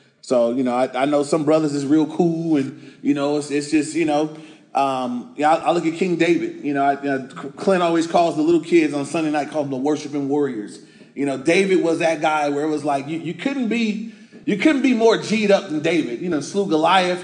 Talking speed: 245 wpm